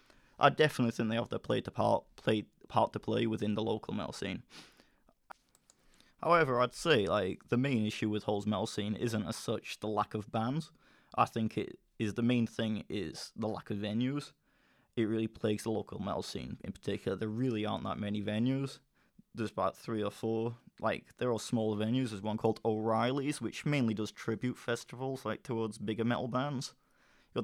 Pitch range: 110-125 Hz